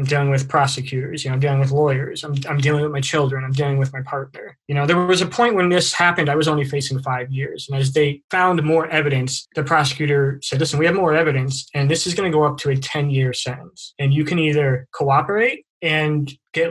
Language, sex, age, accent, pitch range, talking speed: English, male, 20-39, American, 135-165 Hz, 245 wpm